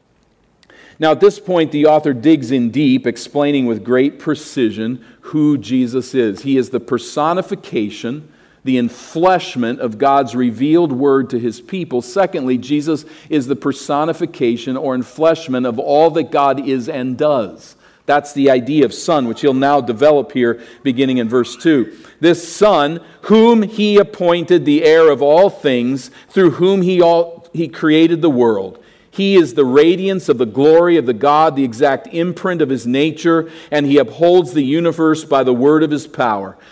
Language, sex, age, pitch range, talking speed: English, male, 50-69, 125-160 Hz, 165 wpm